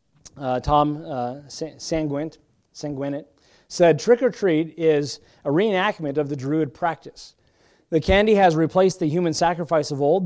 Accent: American